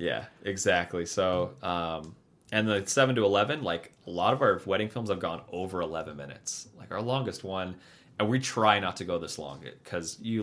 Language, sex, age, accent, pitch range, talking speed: English, male, 30-49, American, 90-115 Hz, 200 wpm